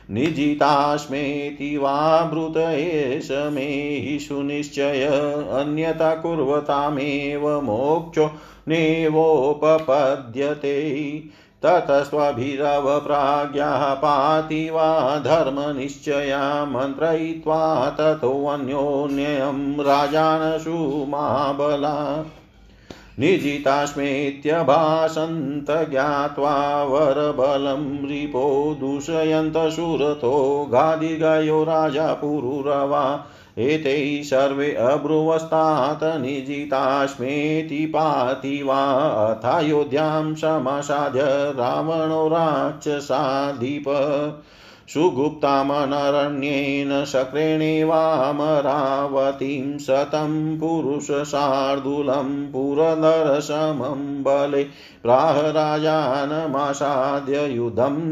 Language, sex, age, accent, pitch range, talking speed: Hindi, male, 50-69, native, 140-155 Hz, 40 wpm